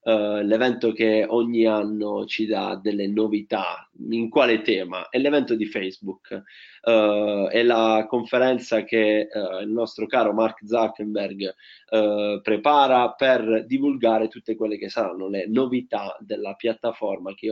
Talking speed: 135 wpm